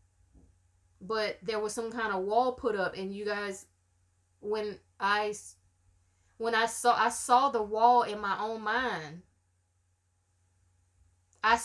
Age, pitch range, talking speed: 20-39, 175-225 Hz, 135 wpm